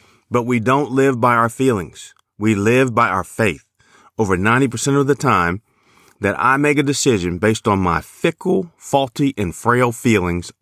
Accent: American